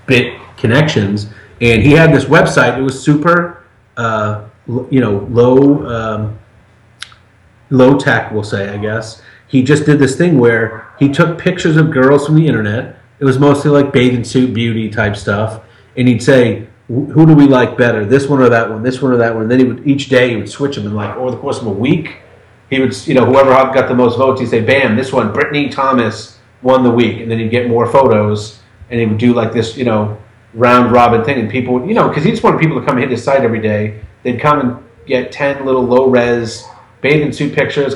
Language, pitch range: English, 110-135 Hz